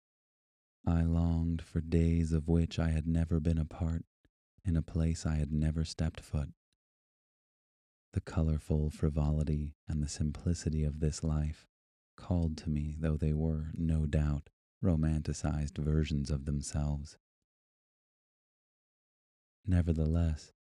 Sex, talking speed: male, 120 wpm